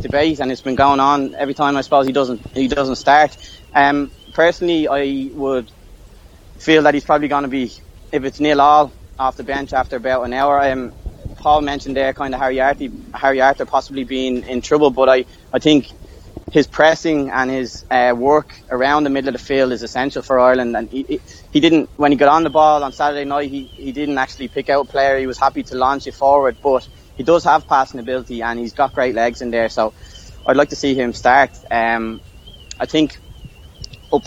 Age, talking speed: 20-39, 220 wpm